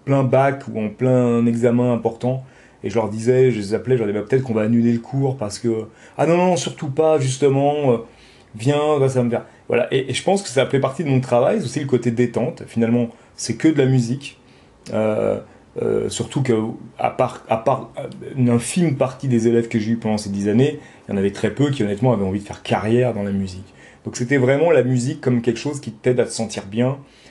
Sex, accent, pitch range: male, French, 115-140 Hz